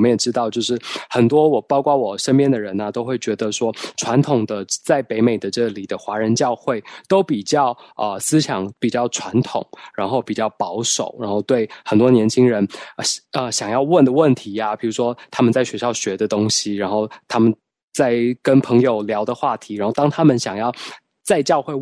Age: 20-39